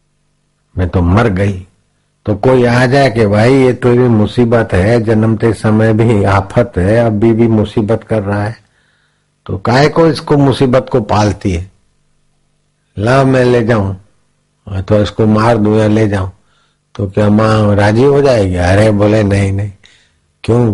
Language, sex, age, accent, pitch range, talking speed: Hindi, male, 50-69, native, 105-125 Hz, 180 wpm